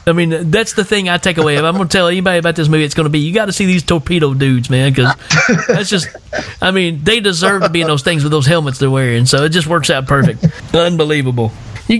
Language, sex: English, male